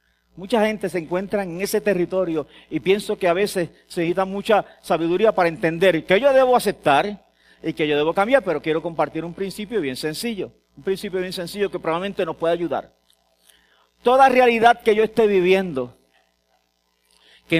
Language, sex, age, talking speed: English, male, 40-59, 170 wpm